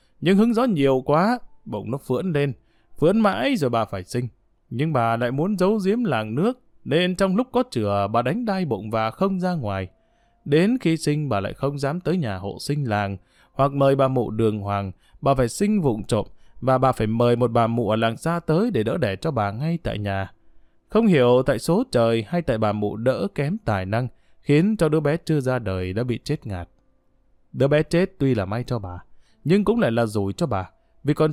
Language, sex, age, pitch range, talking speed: Vietnamese, male, 20-39, 110-165 Hz, 230 wpm